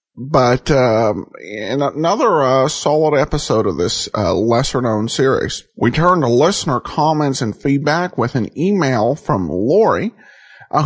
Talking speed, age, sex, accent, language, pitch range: 145 wpm, 50-69, male, American, English, 125-165 Hz